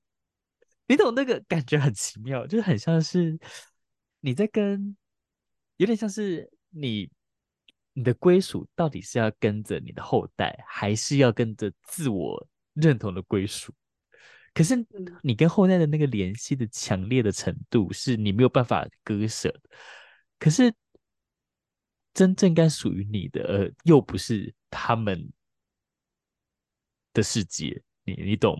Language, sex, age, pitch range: Chinese, male, 20-39, 105-165 Hz